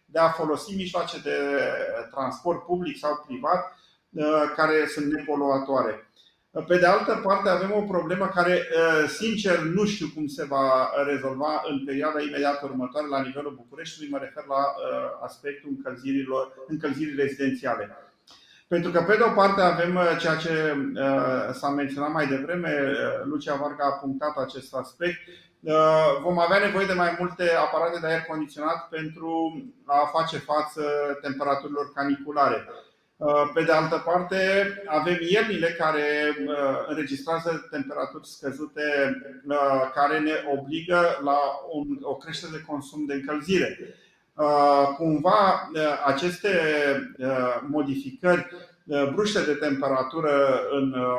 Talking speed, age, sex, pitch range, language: 120 wpm, 40-59, male, 140-170 Hz, Romanian